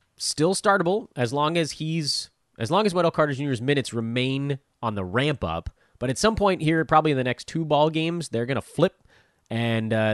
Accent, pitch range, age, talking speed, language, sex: American, 110-150 Hz, 30-49, 215 wpm, English, male